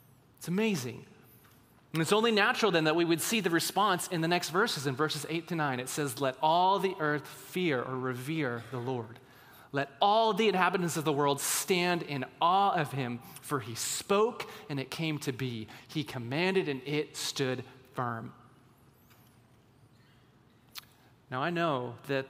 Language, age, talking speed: English, 30-49, 170 wpm